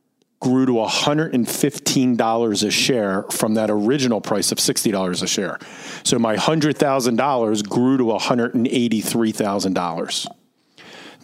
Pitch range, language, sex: 110-145 Hz, English, male